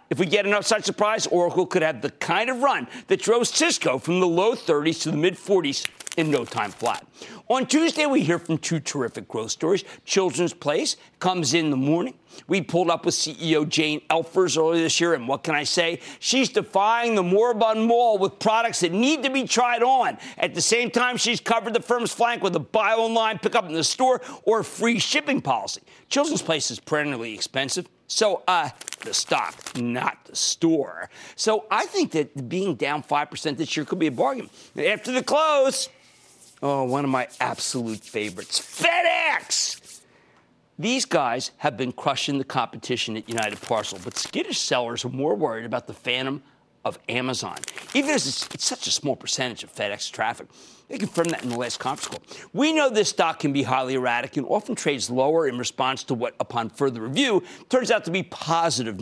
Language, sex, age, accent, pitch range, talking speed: English, male, 50-69, American, 150-235 Hz, 195 wpm